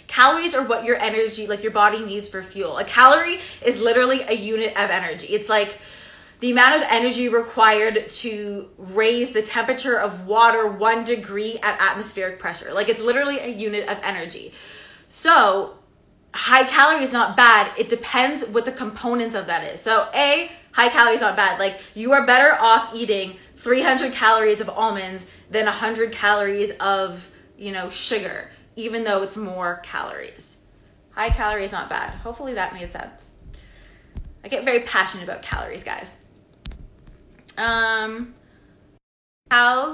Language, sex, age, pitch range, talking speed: English, female, 20-39, 205-240 Hz, 155 wpm